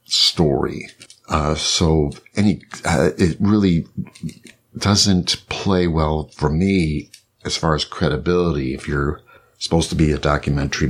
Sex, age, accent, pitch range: male, 60-79, American, 75-90 Hz